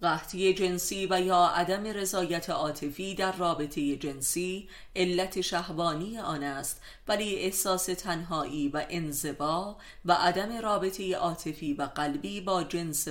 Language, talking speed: Persian, 125 wpm